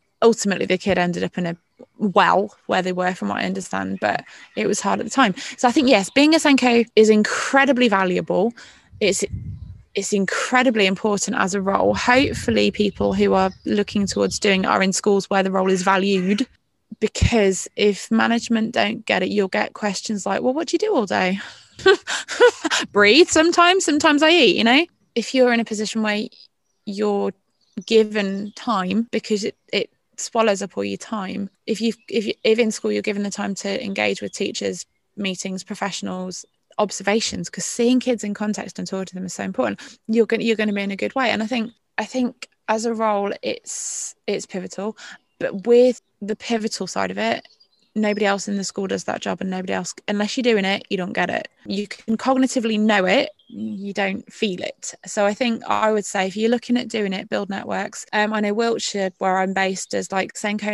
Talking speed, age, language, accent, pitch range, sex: 200 wpm, 20-39, English, British, 195-230 Hz, female